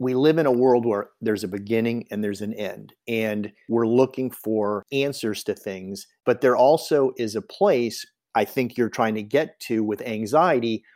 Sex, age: male, 50-69